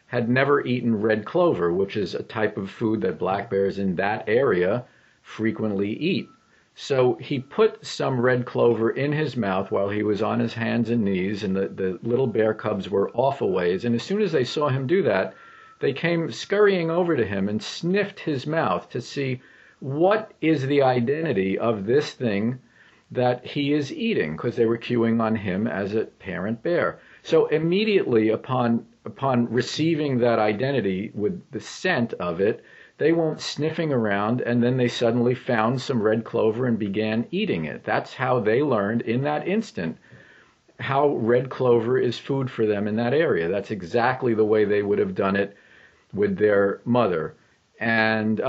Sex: male